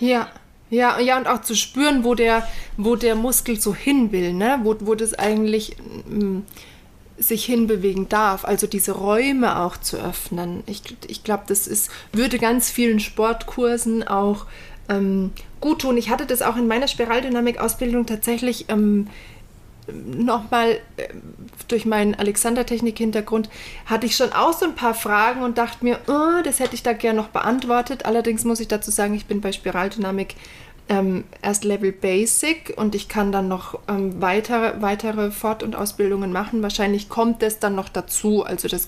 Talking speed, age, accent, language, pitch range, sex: 170 wpm, 30-49, German, German, 200-240 Hz, female